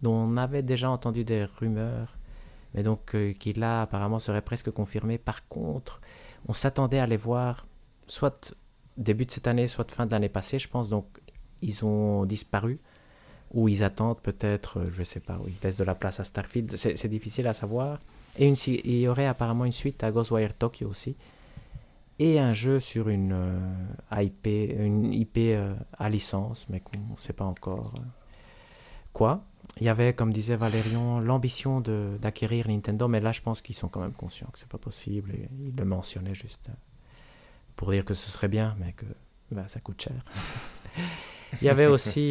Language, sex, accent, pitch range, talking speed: French, male, French, 100-120 Hz, 195 wpm